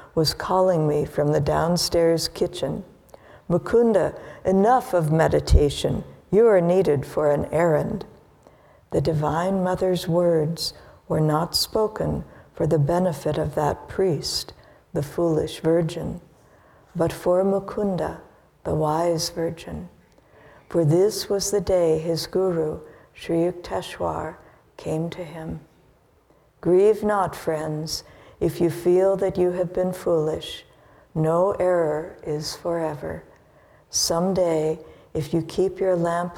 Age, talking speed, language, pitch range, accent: 60-79, 120 wpm, English, 160-185 Hz, American